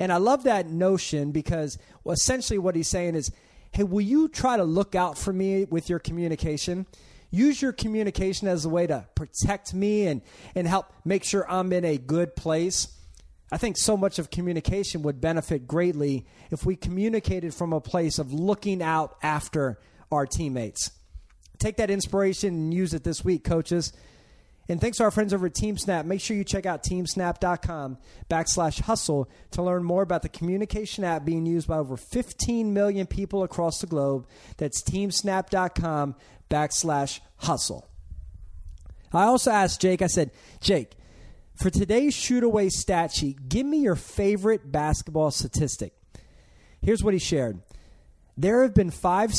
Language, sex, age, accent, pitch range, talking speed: English, male, 30-49, American, 145-195 Hz, 165 wpm